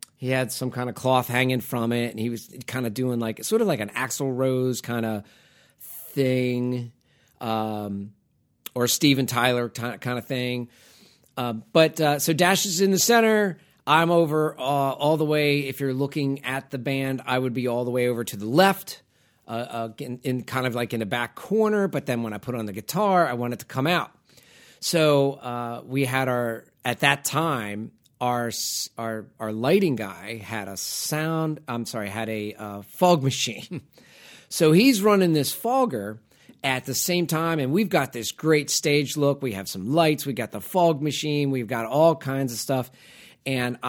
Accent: American